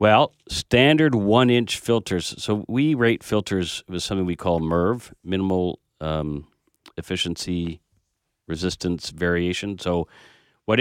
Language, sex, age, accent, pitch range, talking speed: English, male, 40-59, American, 85-110 Hz, 110 wpm